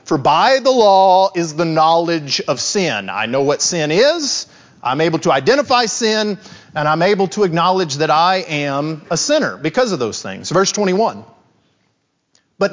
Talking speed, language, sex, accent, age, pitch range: 170 wpm, English, male, American, 40-59, 165-250 Hz